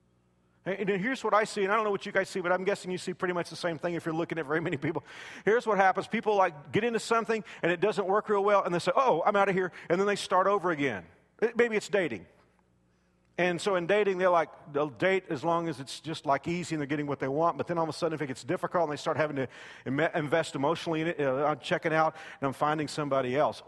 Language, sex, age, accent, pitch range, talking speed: English, male, 40-59, American, 145-190 Hz, 270 wpm